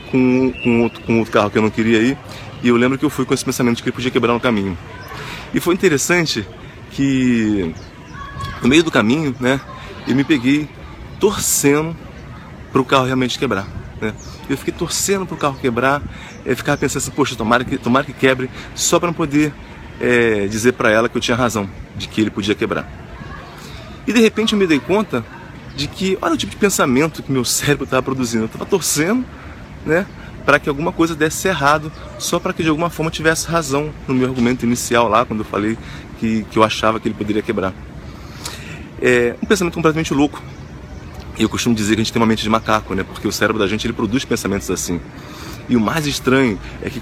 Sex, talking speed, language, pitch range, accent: male, 210 wpm, Portuguese, 110-145 Hz, Brazilian